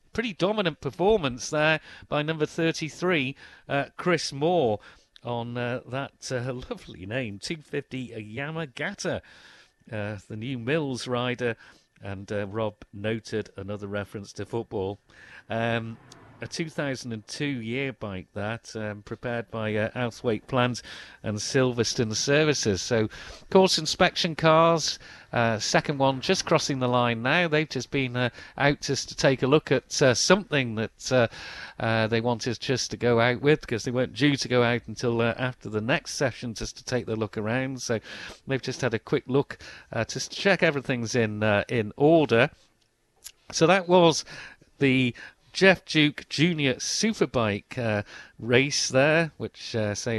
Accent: British